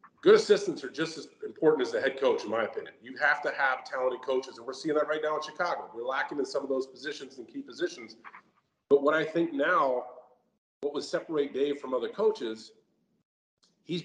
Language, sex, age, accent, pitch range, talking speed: English, male, 40-59, American, 130-190 Hz, 215 wpm